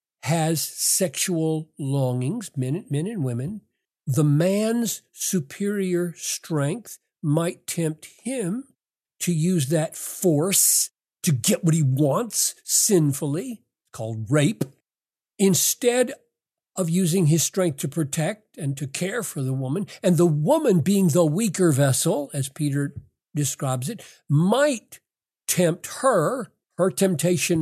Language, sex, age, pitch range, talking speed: English, male, 60-79, 145-195 Hz, 115 wpm